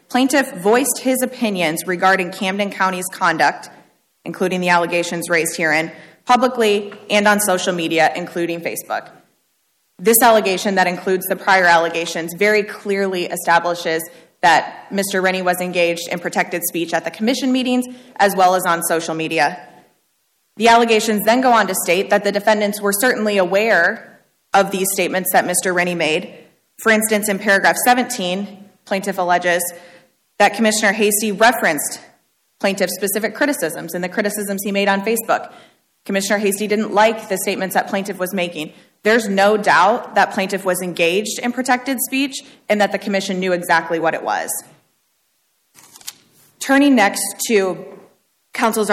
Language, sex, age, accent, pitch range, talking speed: English, female, 20-39, American, 175-210 Hz, 150 wpm